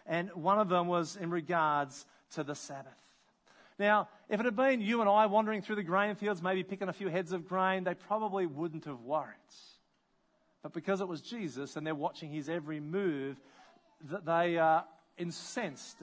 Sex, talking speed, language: male, 185 wpm, English